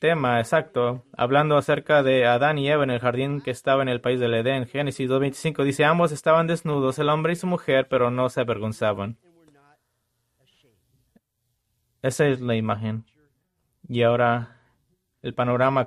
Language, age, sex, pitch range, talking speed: English, 30-49, male, 125-155 Hz, 155 wpm